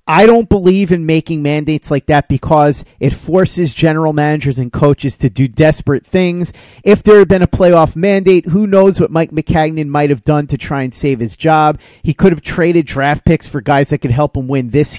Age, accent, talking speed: 40-59, American, 215 wpm